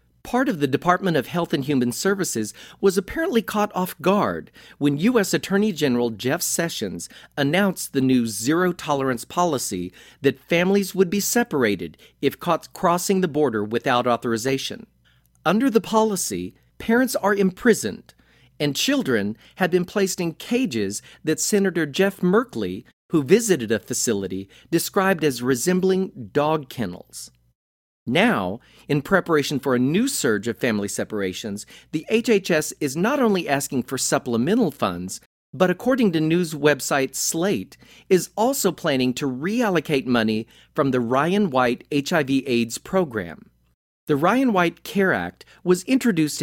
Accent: American